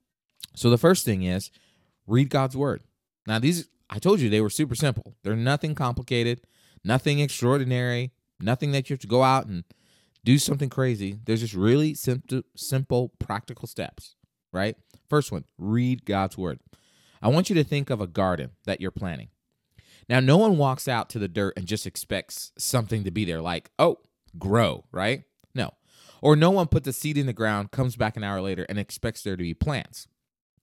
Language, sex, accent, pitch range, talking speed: English, male, American, 100-135 Hz, 190 wpm